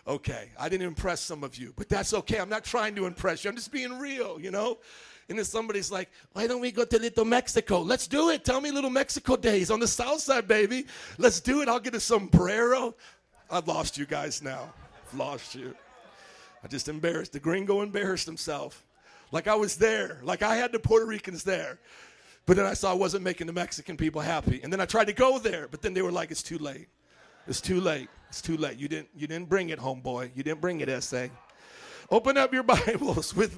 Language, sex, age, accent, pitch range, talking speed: English, male, 40-59, American, 160-220 Hz, 230 wpm